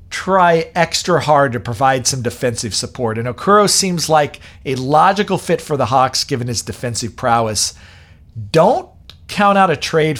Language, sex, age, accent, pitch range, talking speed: English, male, 40-59, American, 110-170 Hz, 160 wpm